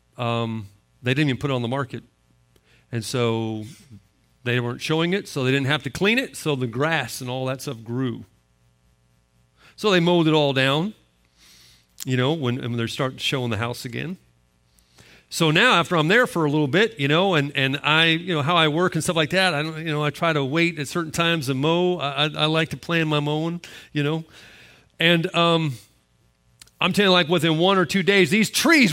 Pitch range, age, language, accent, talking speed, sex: 120-185 Hz, 40-59, English, American, 220 wpm, male